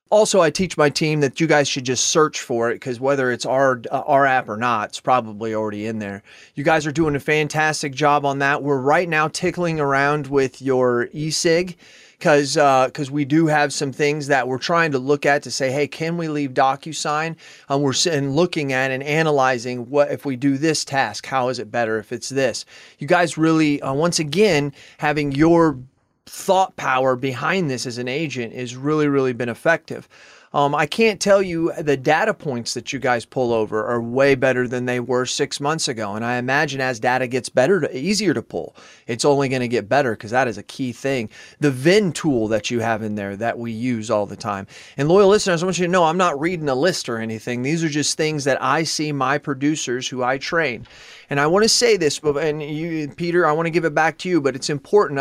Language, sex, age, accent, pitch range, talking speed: English, male, 30-49, American, 130-160 Hz, 230 wpm